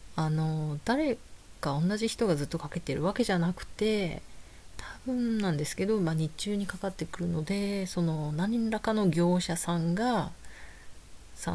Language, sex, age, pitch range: Japanese, female, 30-49, 145-180 Hz